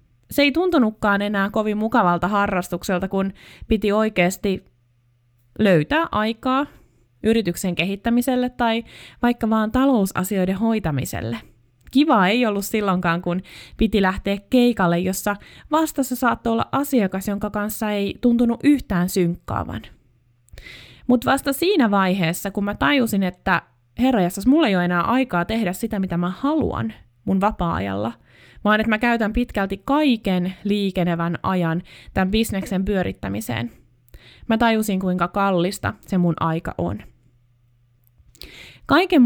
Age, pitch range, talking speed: 20-39, 165-225 Hz, 120 wpm